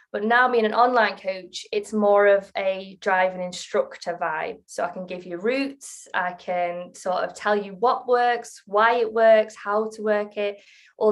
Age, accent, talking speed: 20-39, British, 190 wpm